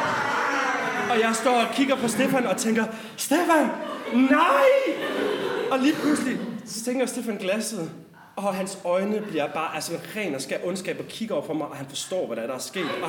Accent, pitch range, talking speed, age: native, 200-275 Hz, 190 wpm, 30-49